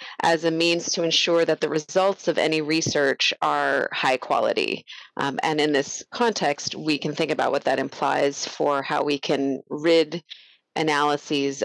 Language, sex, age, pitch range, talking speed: English, female, 30-49, 150-180 Hz, 165 wpm